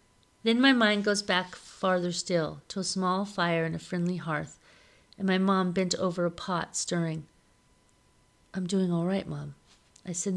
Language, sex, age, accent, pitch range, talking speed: English, female, 40-59, American, 165-195 Hz, 175 wpm